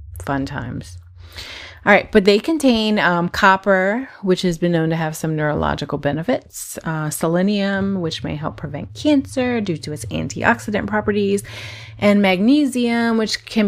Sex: female